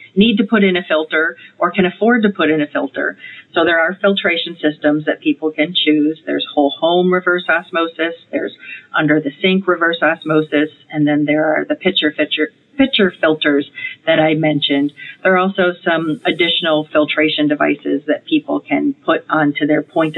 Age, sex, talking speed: 40-59, female, 180 wpm